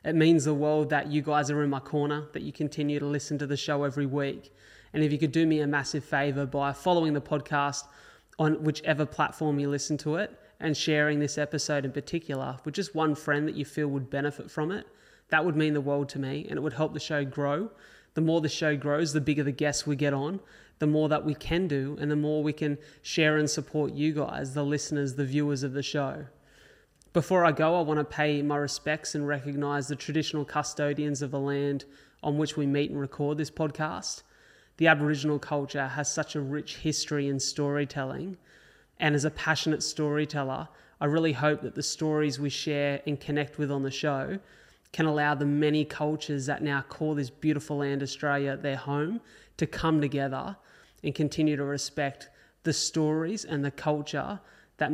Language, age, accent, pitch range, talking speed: English, 20-39, Australian, 145-155 Hz, 205 wpm